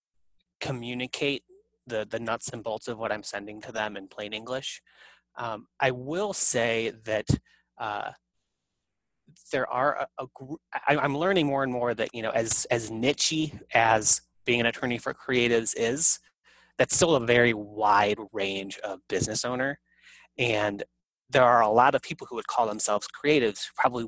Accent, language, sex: American, English, male